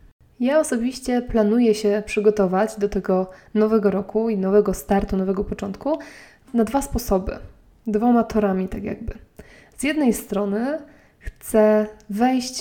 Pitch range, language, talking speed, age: 200-235 Hz, Polish, 125 wpm, 20-39